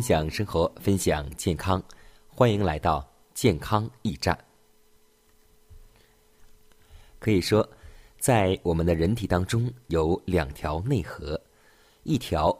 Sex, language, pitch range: male, Chinese, 85-110 Hz